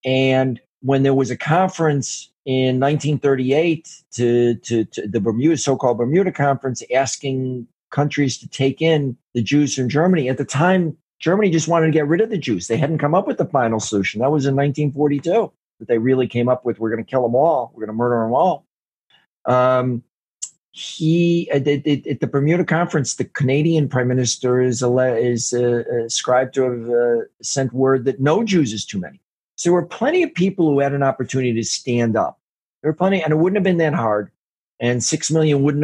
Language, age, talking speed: English, 50-69, 200 wpm